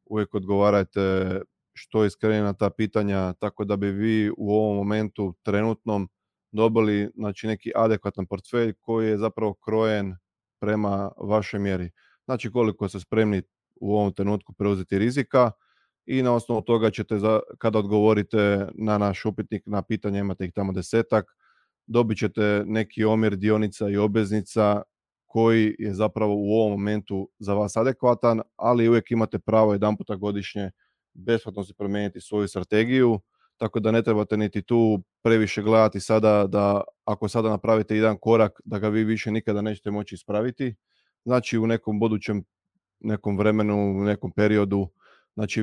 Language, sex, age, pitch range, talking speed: Croatian, male, 20-39, 100-110 Hz, 150 wpm